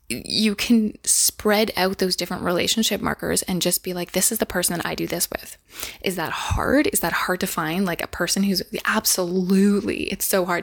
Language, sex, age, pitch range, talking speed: English, female, 20-39, 185-225 Hz, 210 wpm